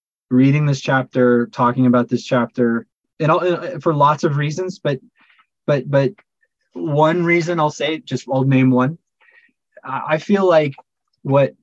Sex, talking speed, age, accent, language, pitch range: male, 145 wpm, 20-39, American, English, 125-150 Hz